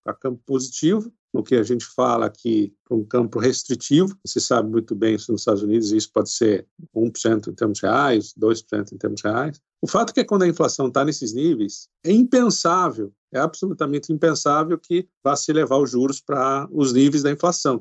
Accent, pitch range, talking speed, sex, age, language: Brazilian, 115-165 Hz, 195 wpm, male, 50-69, Portuguese